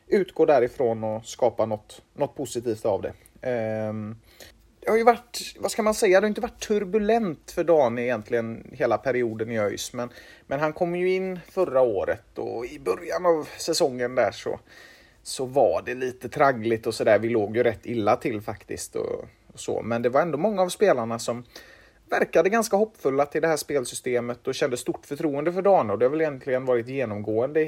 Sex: male